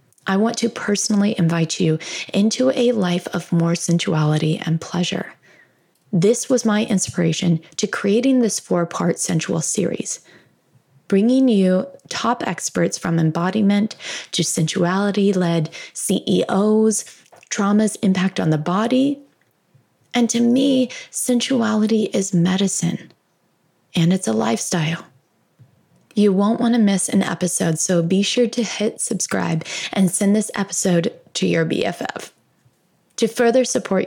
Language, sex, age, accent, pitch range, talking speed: English, female, 20-39, American, 170-220 Hz, 130 wpm